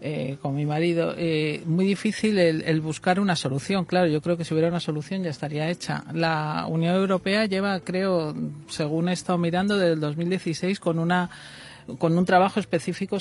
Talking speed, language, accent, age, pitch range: 185 wpm, Spanish, Spanish, 40-59, 155-190 Hz